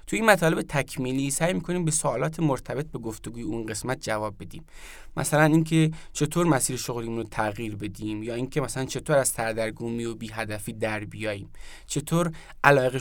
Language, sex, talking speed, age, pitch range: Persian, male, 155 wpm, 20-39, 120-155 Hz